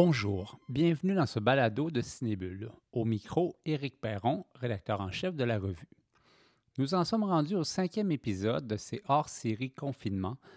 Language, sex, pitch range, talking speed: French, male, 110-155 Hz, 165 wpm